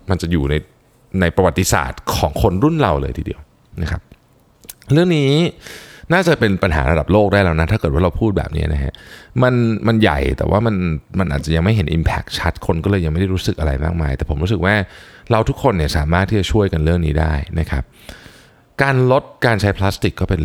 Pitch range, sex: 80-110 Hz, male